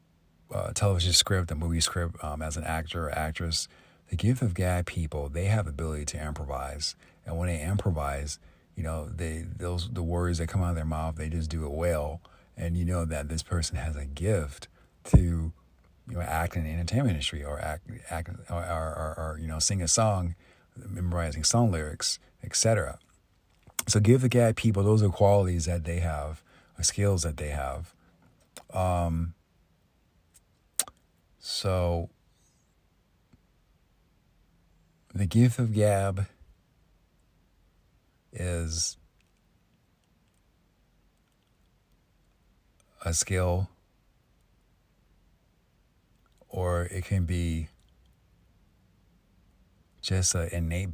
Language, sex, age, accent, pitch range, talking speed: English, male, 50-69, American, 80-95 Hz, 125 wpm